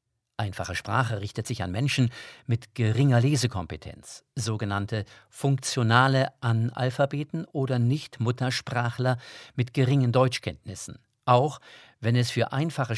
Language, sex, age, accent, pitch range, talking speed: German, male, 50-69, German, 110-135 Hz, 100 wpm